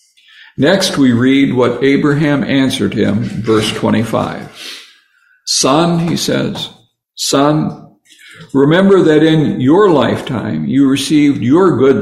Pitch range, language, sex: 135-165 Hz, English, male